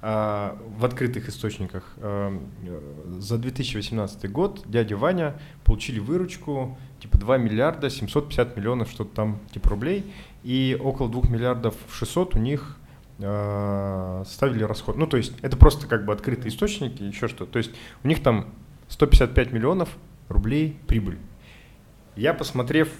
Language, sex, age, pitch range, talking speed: Russian, male, 20-39, 105-125 Hz, 130 wpm